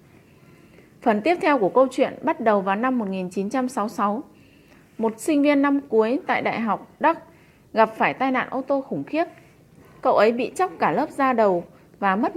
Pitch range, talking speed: 205-275 Hz, 185 wpm